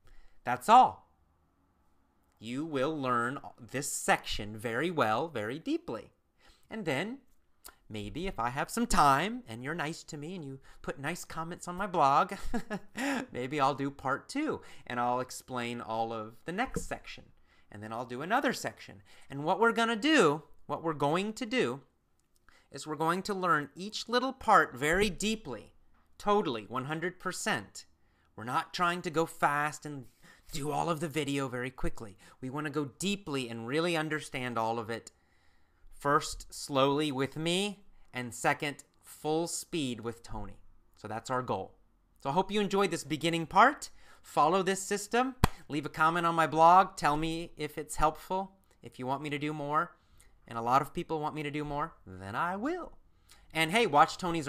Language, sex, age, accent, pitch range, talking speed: English, male, 30-49, American, 115-170 Hz, 175 wpm